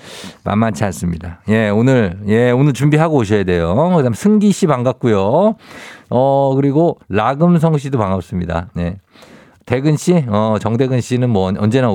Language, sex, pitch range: Korean, male, 105-160 Hz